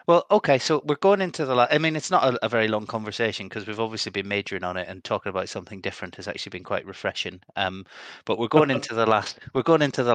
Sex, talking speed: male, 265 wpm